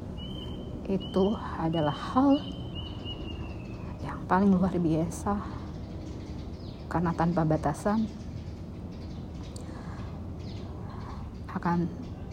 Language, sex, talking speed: Indonesian, female, 55 wpm